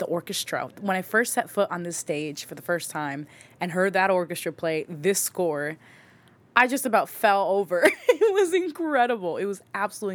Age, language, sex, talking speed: 20-39, English, female, 190 wpm